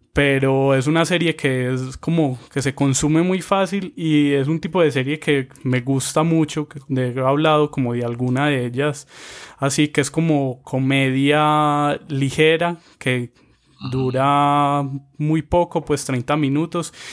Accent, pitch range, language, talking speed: Colombian, 130-155 Hz, Spanish, 150 wpm